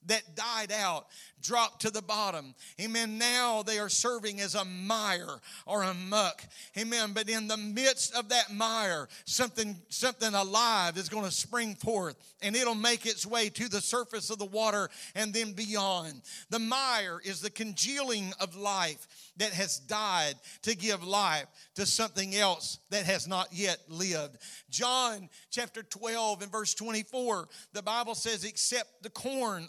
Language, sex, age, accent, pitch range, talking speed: English, male, 40-59, American, 195-235 Hz, 165 wpm